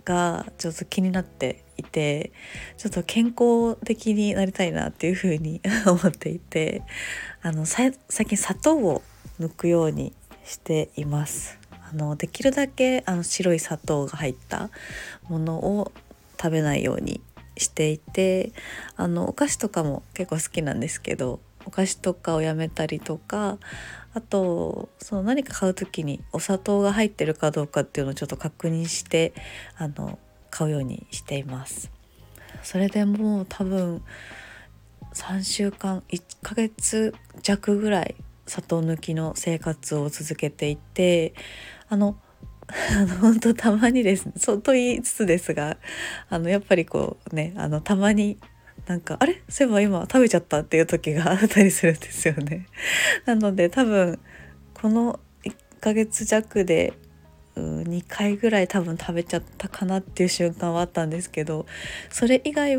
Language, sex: Japanese, female